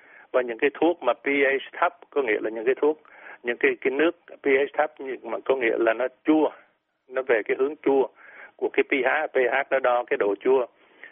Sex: male